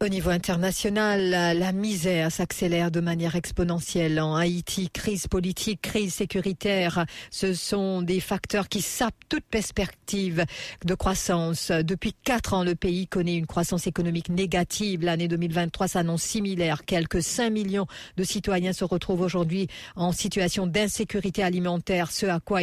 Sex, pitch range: female, 175-200 Hz